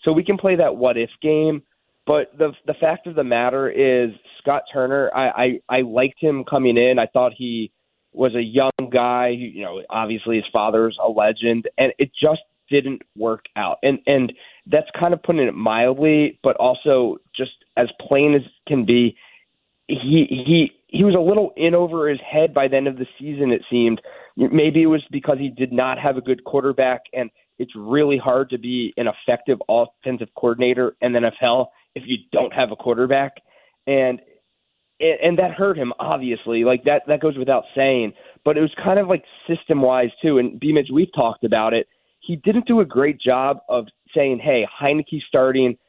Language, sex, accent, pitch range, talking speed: English, male, American, 125-155 Hz, 190 wpm